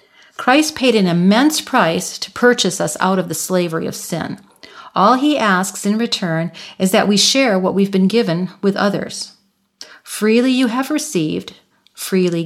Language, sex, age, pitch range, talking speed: English, female, 50-69, 180-235 Hz, 165 wpm